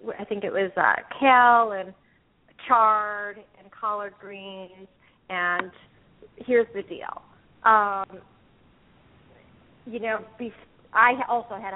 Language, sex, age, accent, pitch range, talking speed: English, female, 30-49, American, 195-220 Hz, 105 wpm